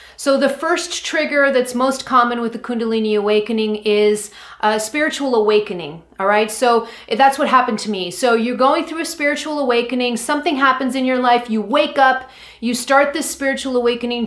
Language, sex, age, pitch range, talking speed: English, female, 30-49, 210-250 Hz, 180 wpm